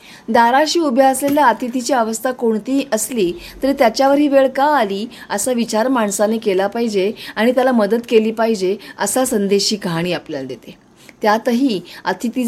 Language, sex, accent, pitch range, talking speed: Marathi, female, native, 215-275 Hz, 150 wpm